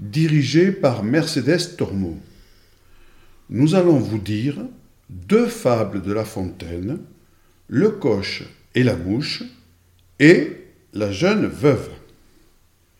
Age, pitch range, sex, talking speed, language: 60-79, 110-180 Hz, male, 100 wpm, French